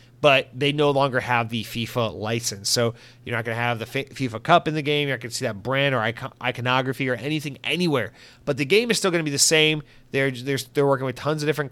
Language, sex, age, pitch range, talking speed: English, male, 30-49, 120-135 Hz, 255 wpm